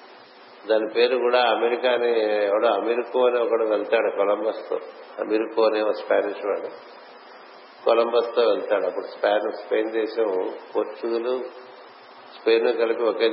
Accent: native